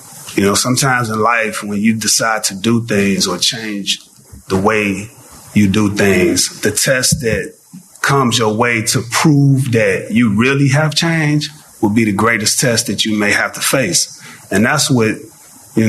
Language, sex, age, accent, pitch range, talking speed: English, male, 30-49, American, 105-130 Hz, 175 wpm